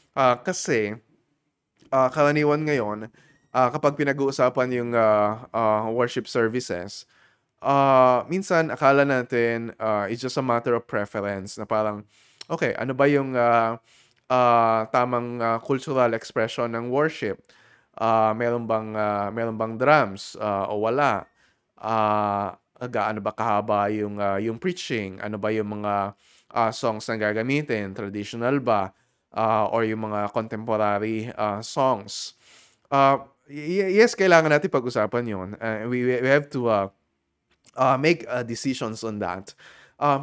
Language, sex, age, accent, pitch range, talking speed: Filipino, male, 20-39, native, 110-140 Hz, 145 wpm